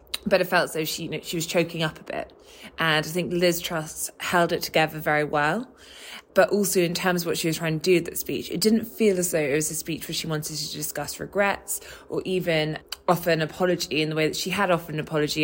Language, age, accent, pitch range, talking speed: English, 20-39, British, 150-180 Hz, 260 wpm